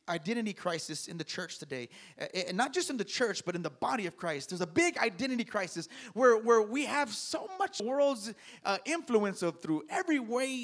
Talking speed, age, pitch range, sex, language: 210 wpm, 30-49, 205-280 Hz, male, English